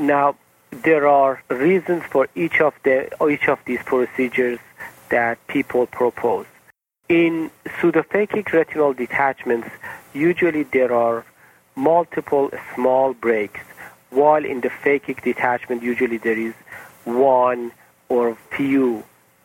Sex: male